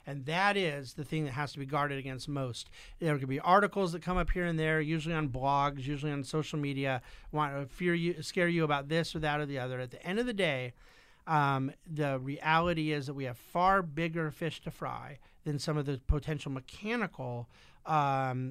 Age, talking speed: 50-69, 215 wpm